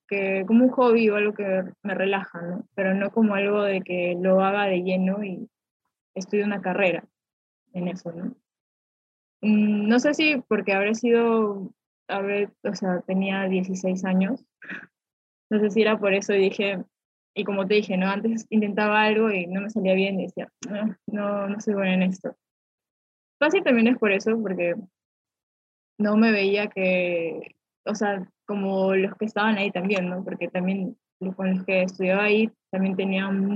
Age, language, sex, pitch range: 10-29, Spanish, female, 190-215 Hz